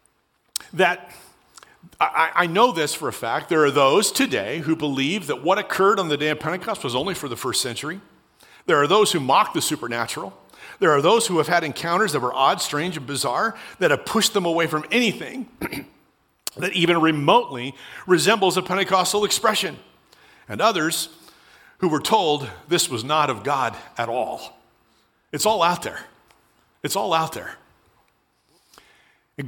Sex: male